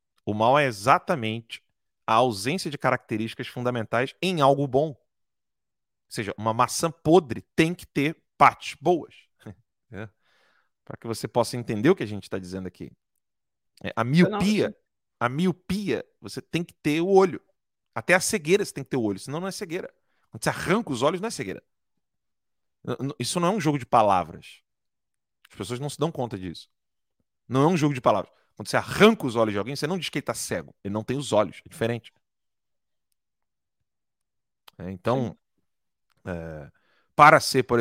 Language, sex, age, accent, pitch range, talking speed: Portuguese, male, 40-59, Brazilian, 105-150 Hz, 175 wpm